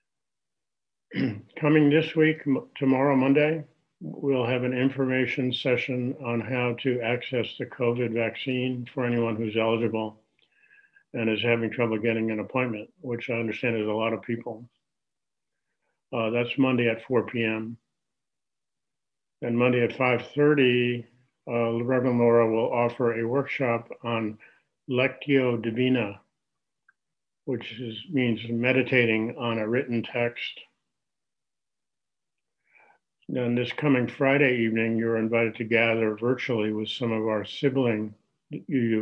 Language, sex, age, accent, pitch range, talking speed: English, male, 50-69, American, 115-125 Hz, 120 wpm